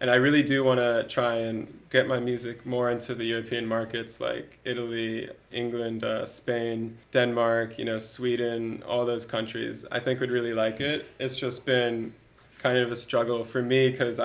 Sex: male